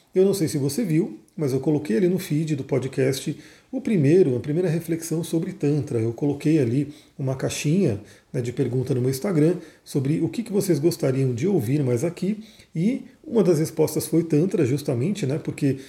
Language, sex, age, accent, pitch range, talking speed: Portuguese, male, 40-59, Brazilian, 140-175 Hz, 195 wpm